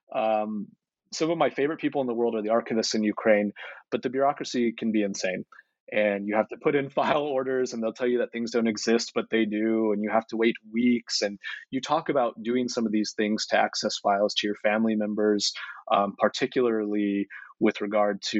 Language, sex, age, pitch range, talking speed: English, male, 30-49, 105-130 Hz, 215 wpm